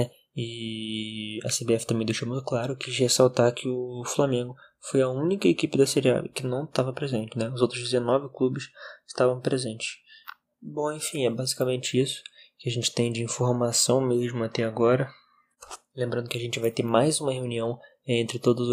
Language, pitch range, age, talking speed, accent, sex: Portuguese, 115-130 Hz, 20-39, 175 wpm, Brazilian, male